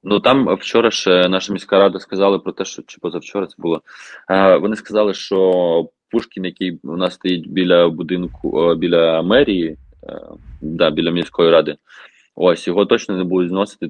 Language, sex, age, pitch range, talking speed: Ukrainian, male, 20-39, 85-105 Hz, 160 wpm